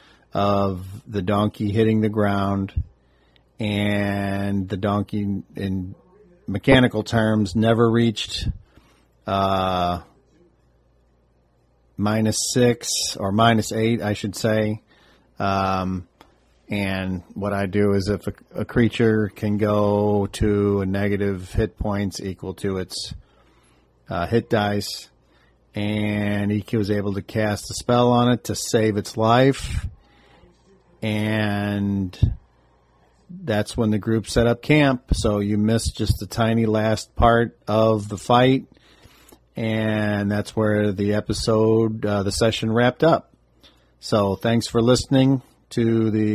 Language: English